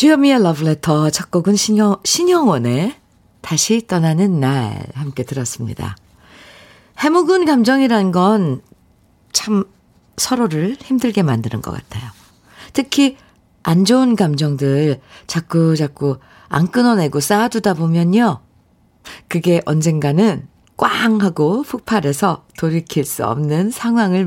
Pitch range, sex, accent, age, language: 145-220 Hz, female, native, 50-69, Korean